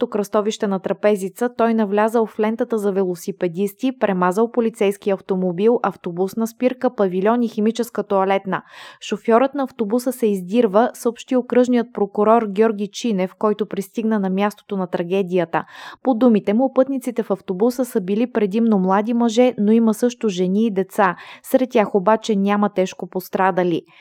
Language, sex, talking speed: Bulgarian, female, 145 wpm